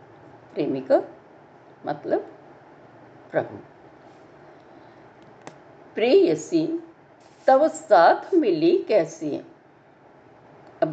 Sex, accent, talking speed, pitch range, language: female, native, 55 wpm, 225-345 Hz, Hindi